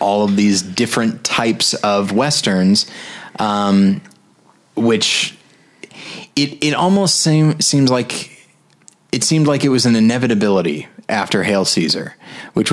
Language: English